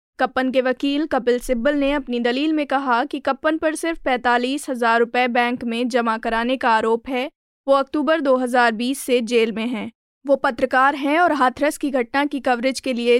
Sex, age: female, 20-39